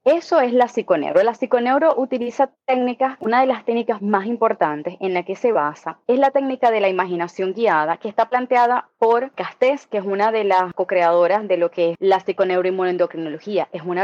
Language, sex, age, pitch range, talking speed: Spanish, female, 20-39, 185-240 Hz, 190 wpm